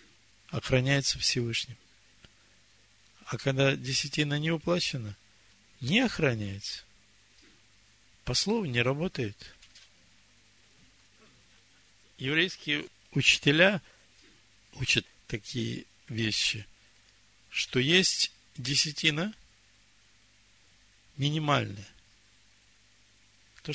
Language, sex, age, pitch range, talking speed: Russian, male, 50-69, 105-140 Hz, 60 wpm